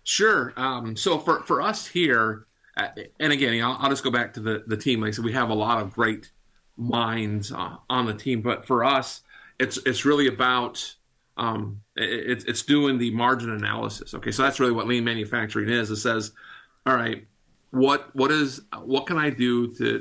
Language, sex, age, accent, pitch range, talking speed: English, male, 40-59, American, 115-130 Hz, 200 wpm